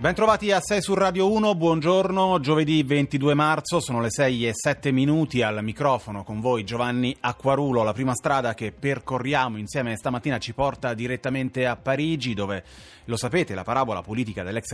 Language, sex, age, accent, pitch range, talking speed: Italian, male, 30-49, native, 105-135 Hz, 170 wpm